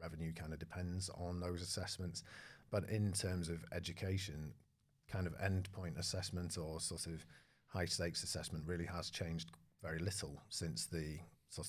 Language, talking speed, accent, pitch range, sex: English, 155 wpm, British, 80-95 Hz, male